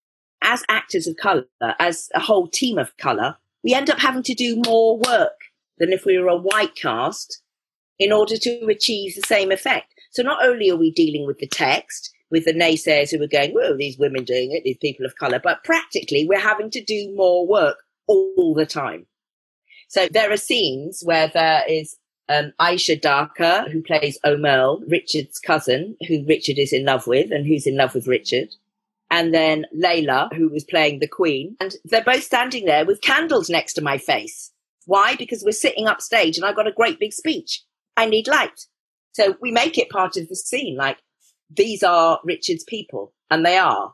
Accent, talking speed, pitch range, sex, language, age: British, 195 wpm, 150-240 Hz, female, English, 40-59